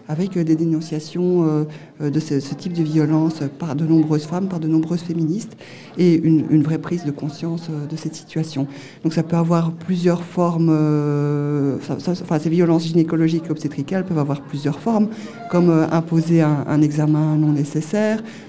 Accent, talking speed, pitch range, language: French, 155 wpm, 155-180 Hz, French